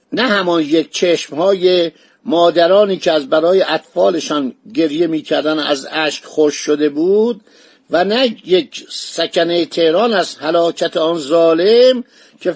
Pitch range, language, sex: 160-220 Hz, Persian, male